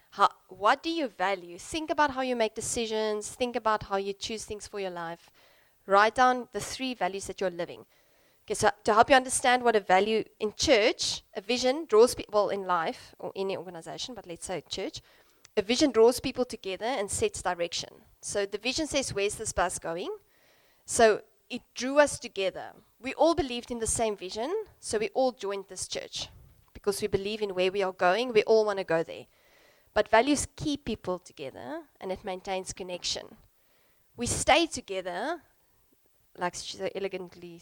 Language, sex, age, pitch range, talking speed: English, female, 30-49, 185-240 Hz, 185 wpm